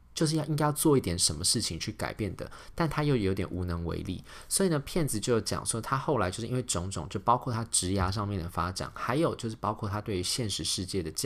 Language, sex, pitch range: Chinese, male, 90-120 Hz